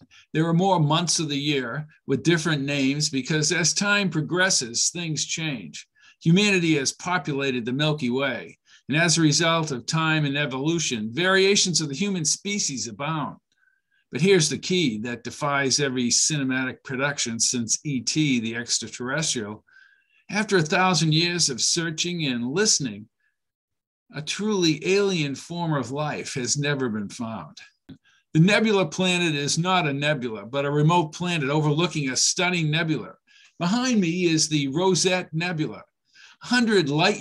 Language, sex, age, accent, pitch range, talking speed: English, male, 50-69, American, 140-180 Hz, 145 wpm